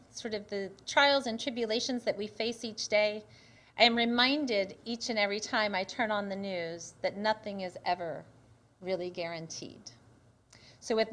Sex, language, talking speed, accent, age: female, English, 165 wpm, American, 30-49